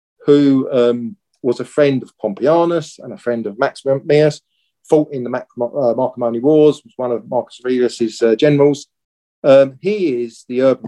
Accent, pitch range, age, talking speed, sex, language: British, 110-145 Hz, 40-59, 170 wpm, male, English